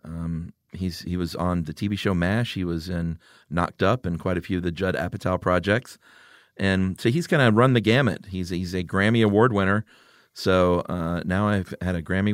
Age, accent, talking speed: 40-59, American, 220 wpm